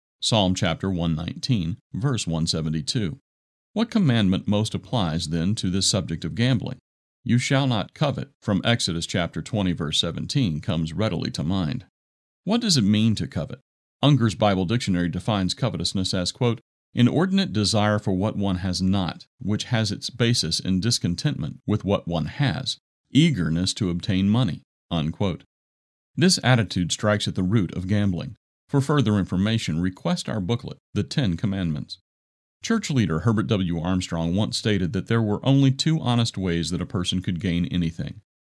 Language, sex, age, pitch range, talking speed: English, male, 50-69, 85-120 Hz, 160 wpm